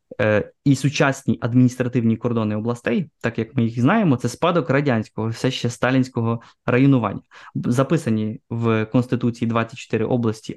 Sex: male